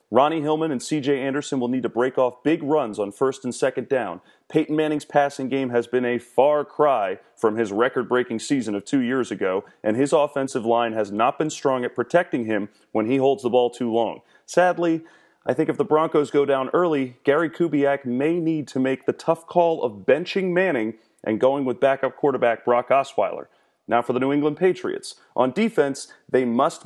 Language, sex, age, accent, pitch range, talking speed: English, male, 30-49, American, 125-160 Hz, 200 wpm